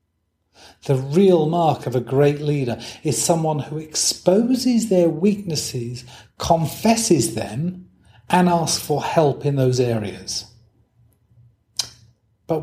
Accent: British